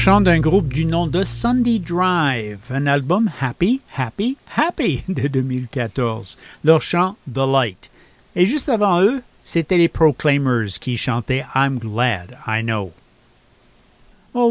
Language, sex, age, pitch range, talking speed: English, male, 50-69, 130-180 Hz, 135 wpm